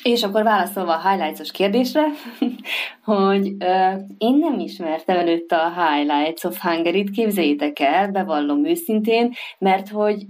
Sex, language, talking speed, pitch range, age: female, Hungarian, 120 wpm, 175-230 Hz, 30-49